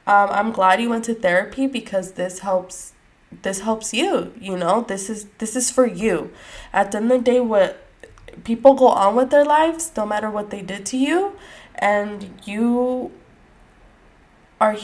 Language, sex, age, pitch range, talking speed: English, female, 10-29, 180-225 Hz, 180 wpm